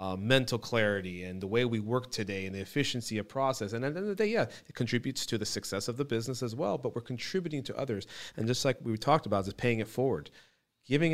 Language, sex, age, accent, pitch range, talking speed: English, male, 40-59, American, 110-150 Hz, 260 wpm